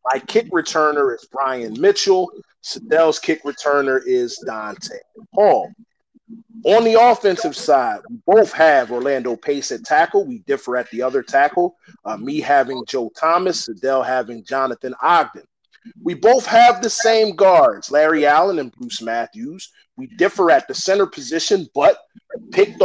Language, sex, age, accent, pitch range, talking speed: English, male, 30-49, American, 145-245 Hz, 150 wpm